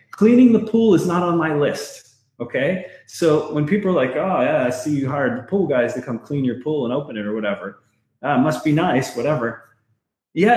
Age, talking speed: 30-49, 220 wpm